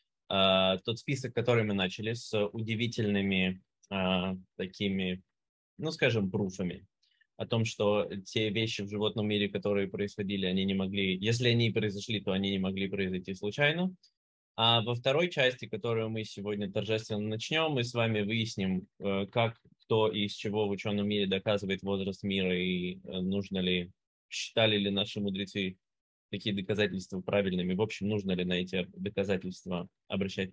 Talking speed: 145 wpm